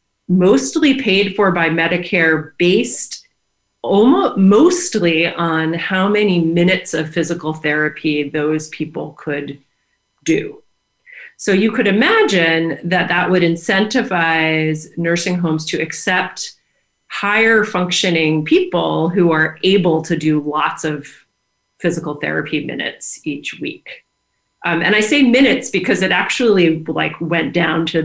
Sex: female